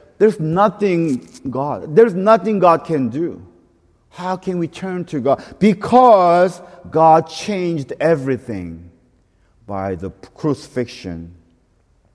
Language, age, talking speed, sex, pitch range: English, 50-69, 105 wpm, male, 115-190 Hz